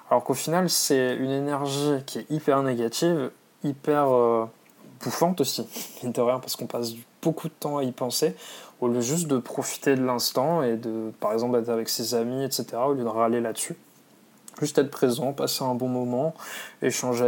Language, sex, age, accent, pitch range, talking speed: French, male, 20-39, French, 120-145 Hz, 190 wpm